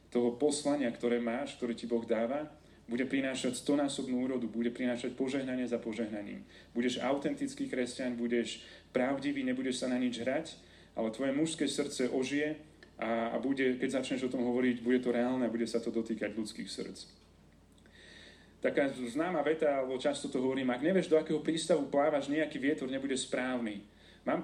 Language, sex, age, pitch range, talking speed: Slovak, male, 30-49, 125-150 Hz, 165 wpm